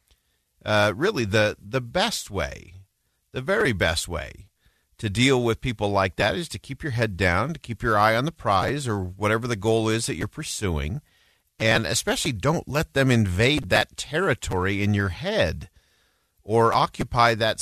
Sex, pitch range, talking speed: male, 90-120 Hz, 175 wpm